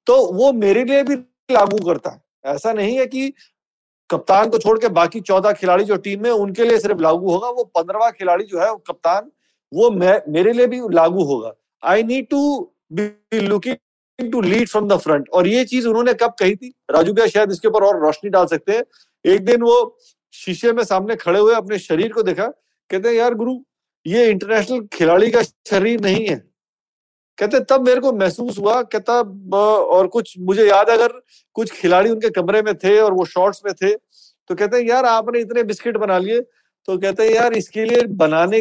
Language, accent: Hindi, native